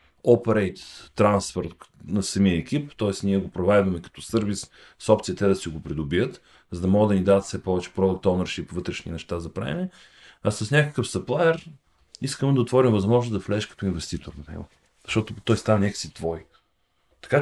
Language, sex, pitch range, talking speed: Bulgarian, male, 85-115 Hz, 180 wpm